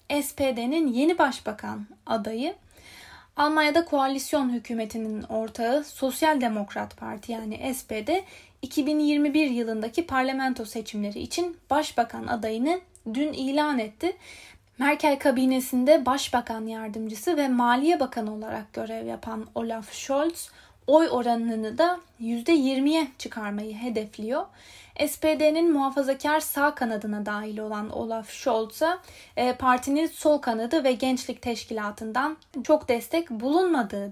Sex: female